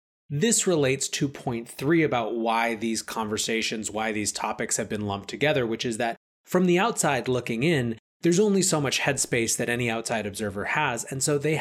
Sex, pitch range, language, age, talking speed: male, 115-145 Hz, English, 20-39, 190 wpm